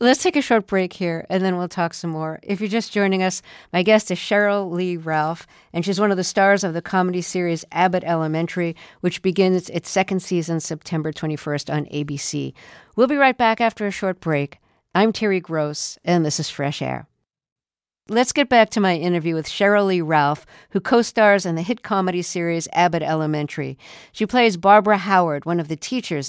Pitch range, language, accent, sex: 160-205 Hz, English, American, female